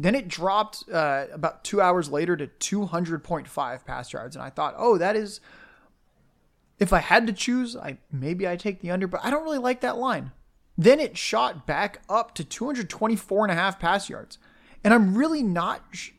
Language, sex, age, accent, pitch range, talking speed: English, male, 20-39, American, 155-205 Hz, 185 wpm